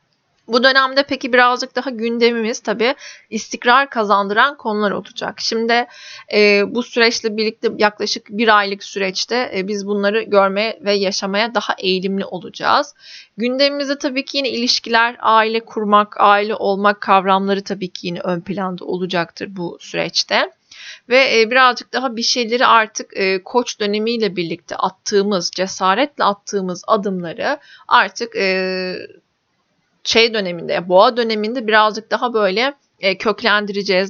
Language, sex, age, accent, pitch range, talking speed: Turkish, female, 30-49, native, 195-240 Hz, 125 wpm